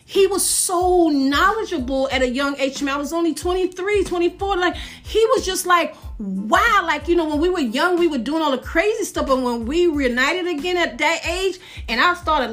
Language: English